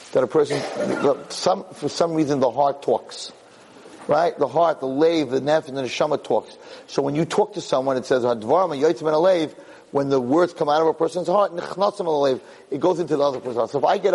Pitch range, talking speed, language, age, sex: 145-215 Hz, 215 wpm, English, 30-49, male